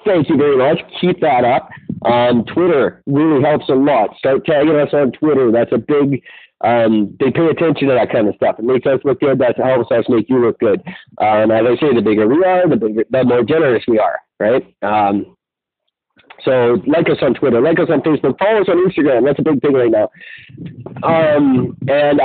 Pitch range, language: 110-155 Hz, English